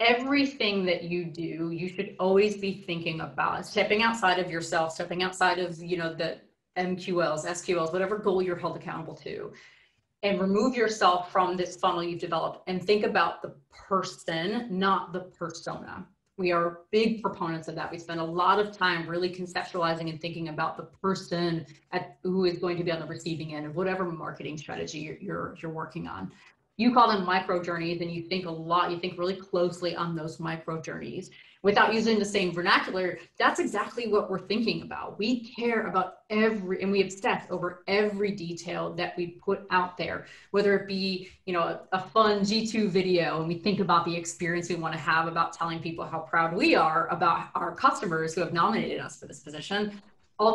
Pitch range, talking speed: 170-195 Hz, 195 wpm